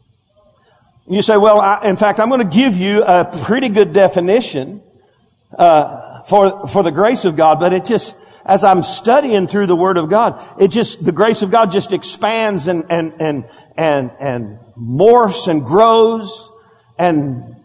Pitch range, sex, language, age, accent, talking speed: 180-225 Hz, male, English, 50-69, American, 165 wpm